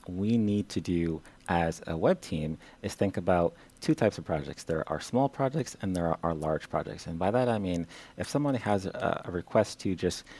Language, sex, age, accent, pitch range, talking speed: English, male, 30-49, American, 85-110 Hz, 220 wpm